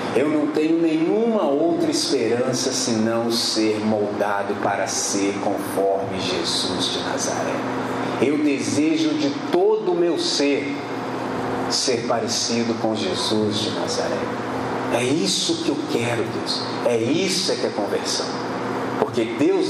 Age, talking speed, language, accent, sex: 40-59, 125 wpm, Portuguese, Brazilian, male